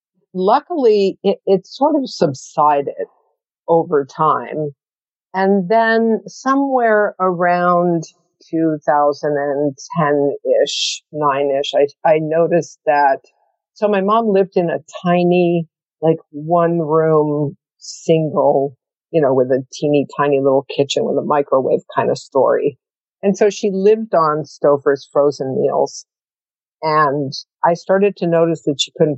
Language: English